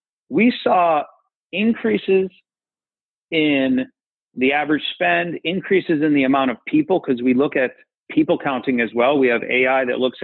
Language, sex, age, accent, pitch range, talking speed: English, male, 40-59, American, 130-200 Hz, 150 wpm